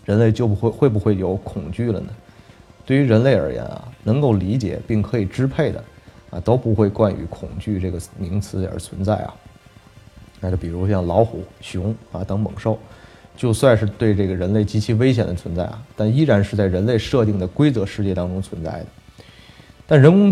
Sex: male